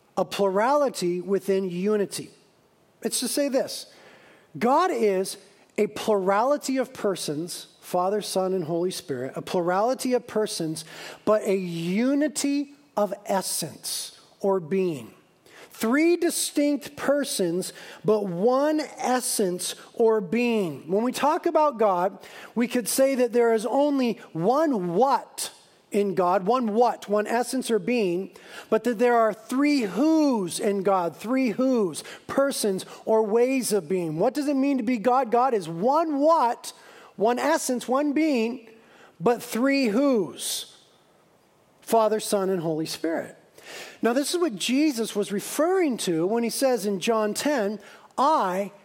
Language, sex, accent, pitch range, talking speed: English, male, American, 195-275 Hz, 140 wpm